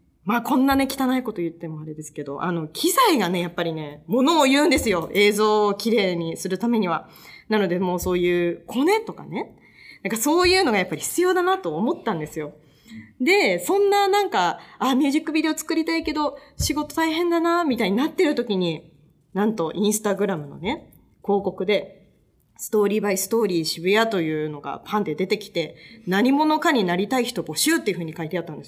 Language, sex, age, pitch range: Japanese, female, 20-39, 180-290 Hz